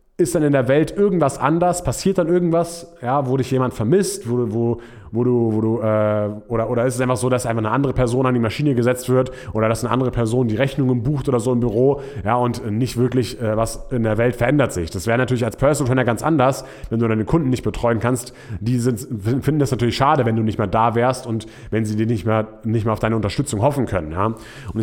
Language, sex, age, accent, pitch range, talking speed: German, male, 30-49, German, 110-135 Hz, 250 wpm